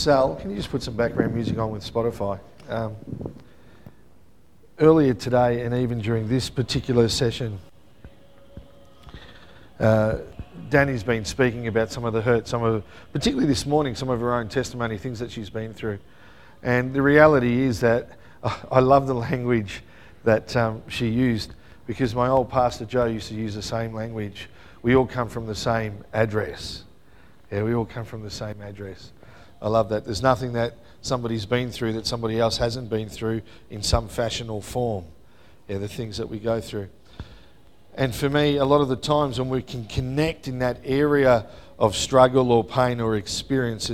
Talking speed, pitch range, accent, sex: 175 wpm, 110-130 Hz, Australian, male